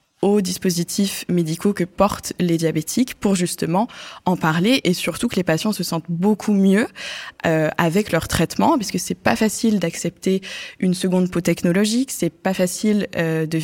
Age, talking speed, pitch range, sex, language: 20-39, 170 wpm, 170-210 Hz, female, French